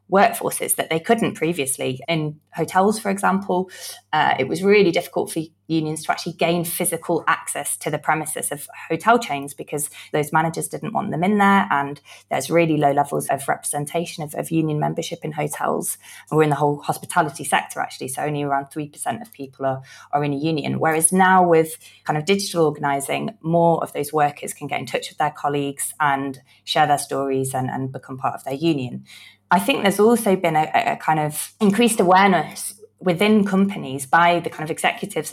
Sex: female